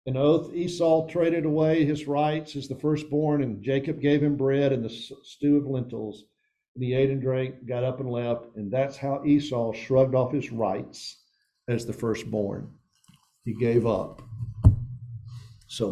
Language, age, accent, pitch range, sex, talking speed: English, 50-69, American, 120-150 Hz, male, 165 wpm